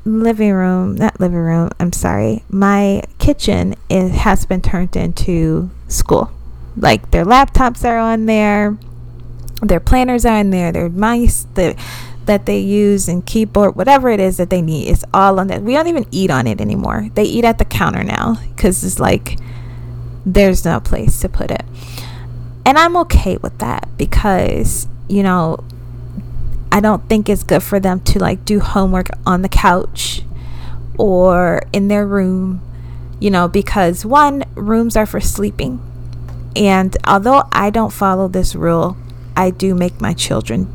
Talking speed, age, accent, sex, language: 165 wpm, 20-39, American, female, English